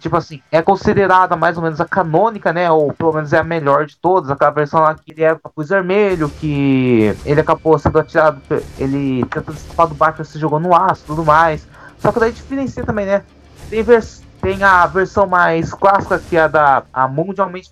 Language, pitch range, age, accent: Portuguese, 150-180 Hz, 20-39, Brazilian